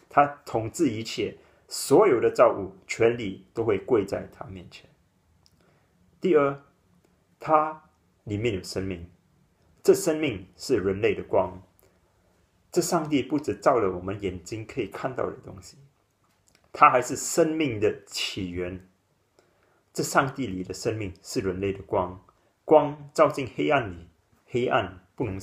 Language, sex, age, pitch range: German, male, 30-49, 95-130 Hz